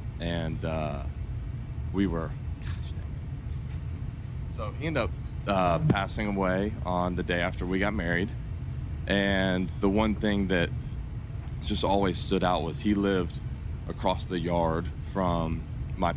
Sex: male